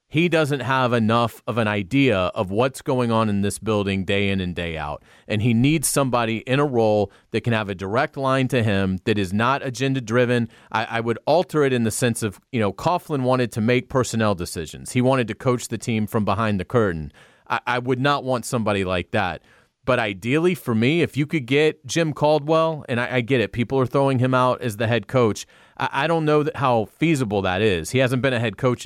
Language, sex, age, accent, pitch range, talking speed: English, male, 30-49, American, 110-135 Hz, 235 wpm